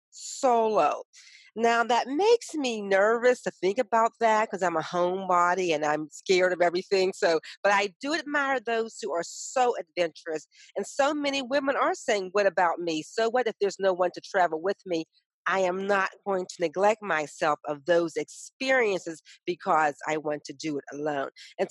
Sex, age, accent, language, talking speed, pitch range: female, 40-59, American, English, 190 wpm, 170-255 Hz